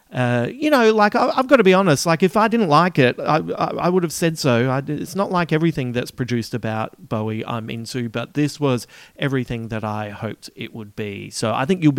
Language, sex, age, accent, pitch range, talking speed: English, male, 40-59, Australian, 120-160 Hz, 225 wpm